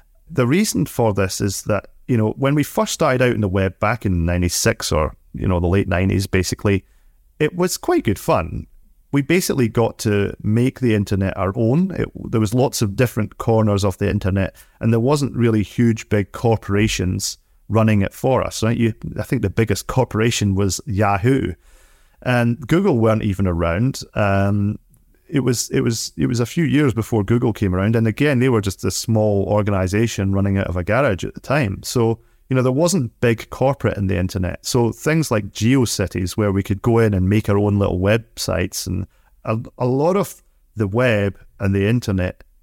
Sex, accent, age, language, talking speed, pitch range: male, British, 30-49, English, 195 wpm, 100-125 Hz